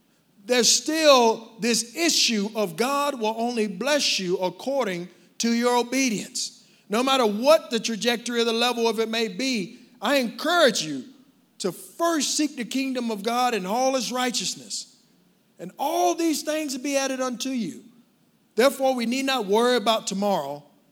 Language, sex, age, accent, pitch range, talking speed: English, male, 50-69, American, 190-250 Hz, 160 wpm